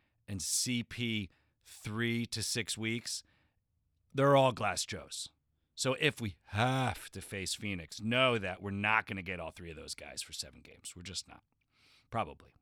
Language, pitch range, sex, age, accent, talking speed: English, 100-155 Hz, male, 40-59, American, 170 wpm